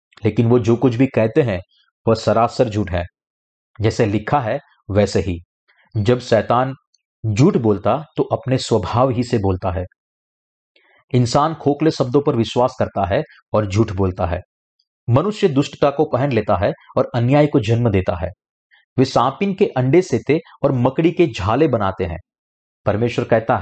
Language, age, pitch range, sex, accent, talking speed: Hindi, 40-59, 105-145 Hz, male, native, 165 wpm